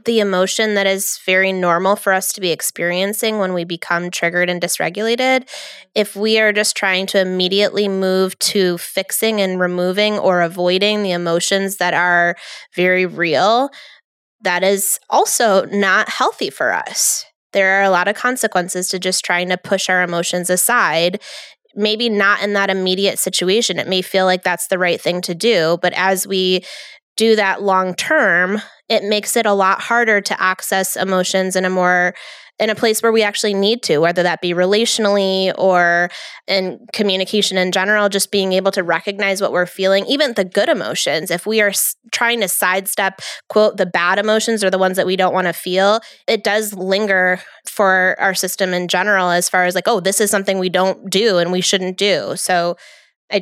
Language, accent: English, American